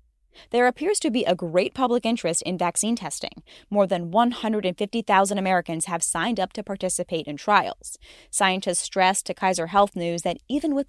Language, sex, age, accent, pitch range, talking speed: English, female, 10-29, American, 175-235 Hz, 170 wpm